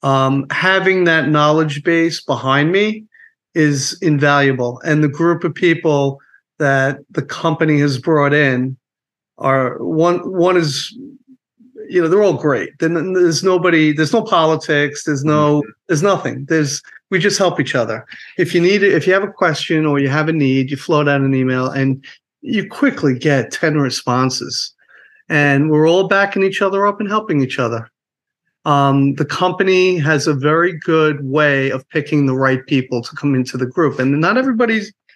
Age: 40-59